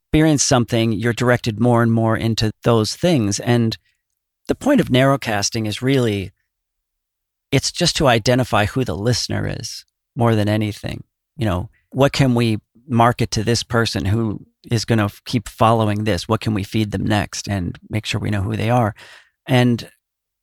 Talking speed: 175 wpm